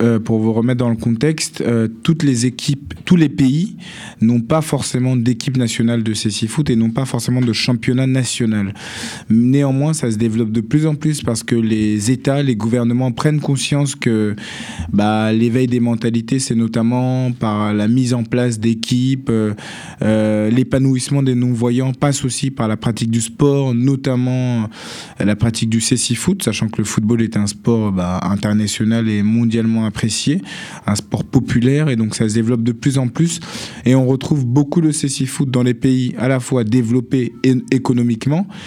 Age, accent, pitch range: 20-39, French, 115-130 Hz